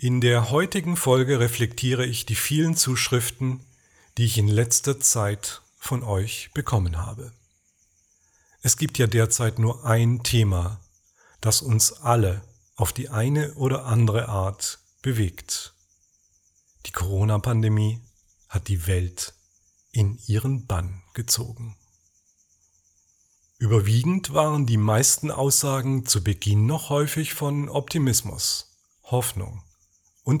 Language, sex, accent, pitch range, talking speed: German, male, German, 95-125 Hz, 110 wpm